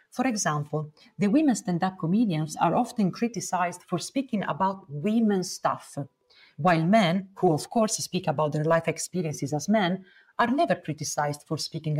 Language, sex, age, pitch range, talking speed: Italian, female, 40-59, 155-210 Hz, 155 wpm